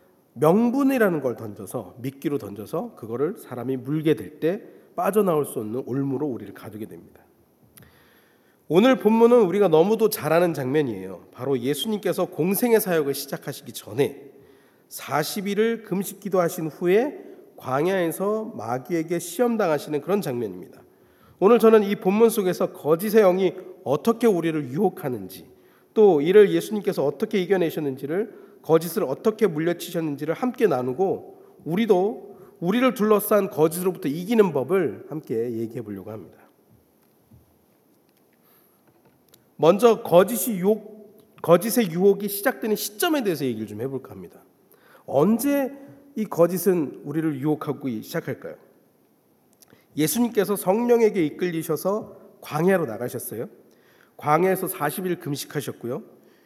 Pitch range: 145-210 Hz